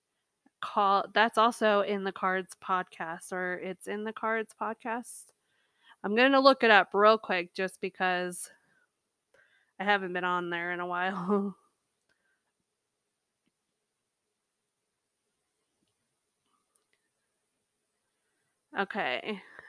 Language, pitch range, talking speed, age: English, 190-220 Hz, 100 wpm, 20-39